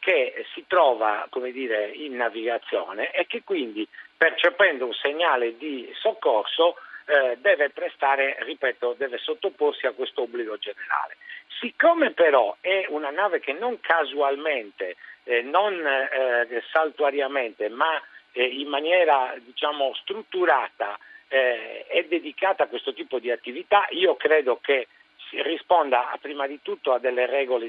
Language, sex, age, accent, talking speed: Italian, male, 50-69, native, 135 wpm